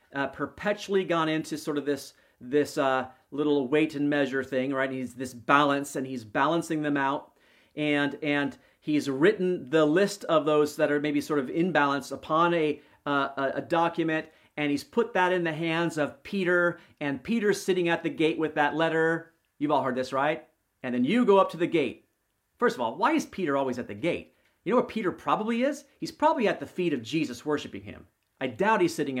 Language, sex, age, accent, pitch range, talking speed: English, male, 40-59, American, 135-170 Hz, 215 wpm